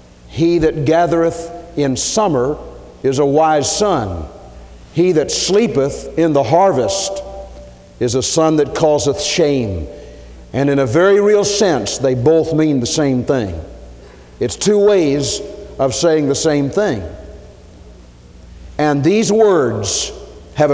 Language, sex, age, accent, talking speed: English, male, 50-69, American, 130 wpm